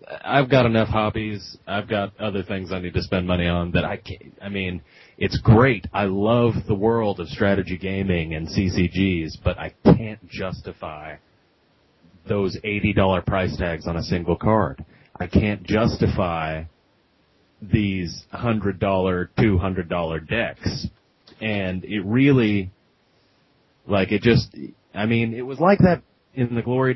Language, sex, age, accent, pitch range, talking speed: English, male, 30-49, American, 90-115 Hz, 140 wpm